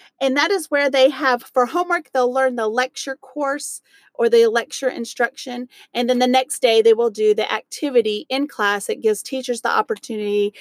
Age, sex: 30-49, female